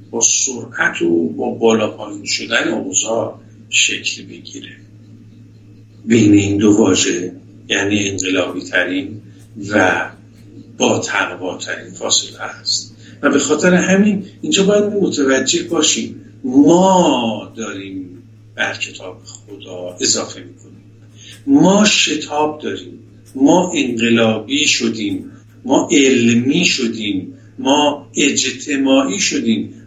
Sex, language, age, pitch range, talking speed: male, Persian, 60-79, 110-175 Hz, 95 wpm